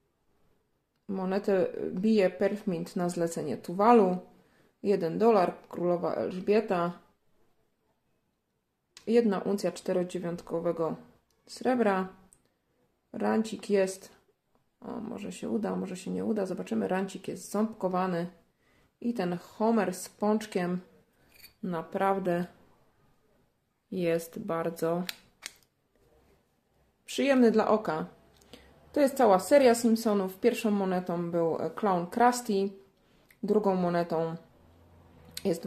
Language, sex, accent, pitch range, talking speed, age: Polish, female, native, 175-210 Hz, 85 wpm, 30-49